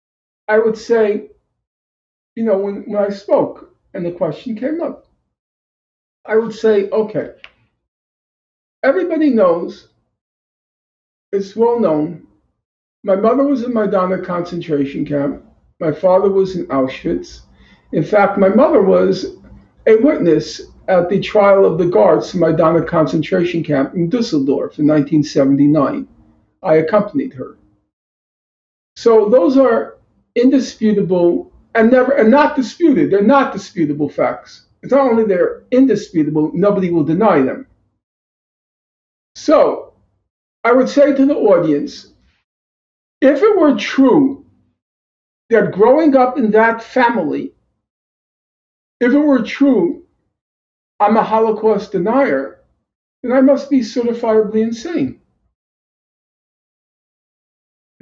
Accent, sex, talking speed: American, male, 115 wpm